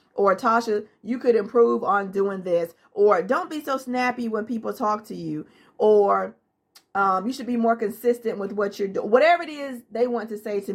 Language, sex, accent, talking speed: English, female, American, 205 wpm